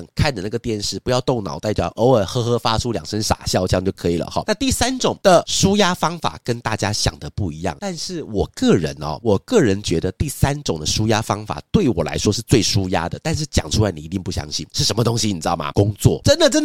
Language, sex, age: Chinese, male, 30-49